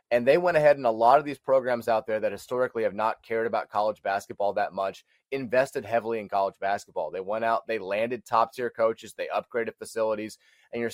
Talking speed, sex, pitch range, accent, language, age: 220 wpm, male, 110-140 Hz, American, English, 30-49